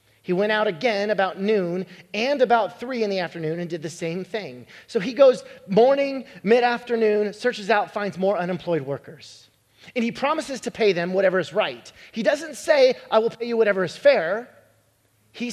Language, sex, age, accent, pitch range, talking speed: English, male, 30-49, American, 150-225 Hz, 185 wpm